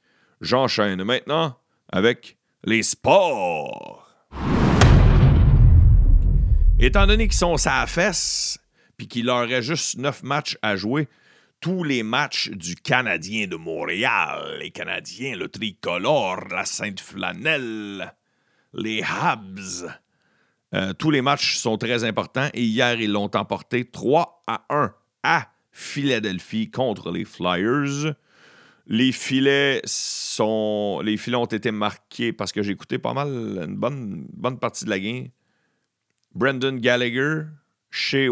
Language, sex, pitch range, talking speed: French, male, 100-135 Hz, 125 wpm